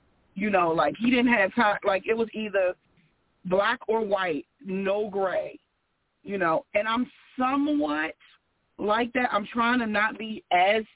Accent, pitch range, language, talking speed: American, 200-255 Hz, English, 160 wpm